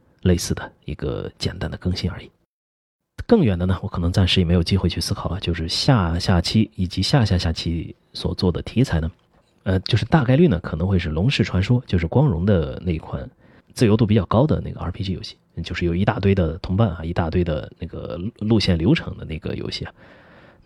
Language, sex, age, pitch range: Chinese, male, 30-49, 85-115 Hz